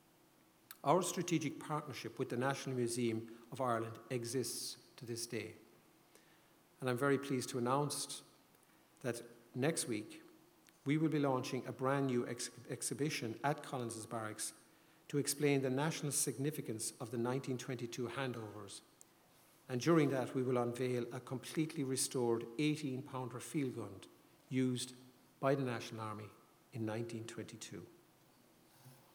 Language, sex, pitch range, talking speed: English, male, 120-145 Hz, 130 wpm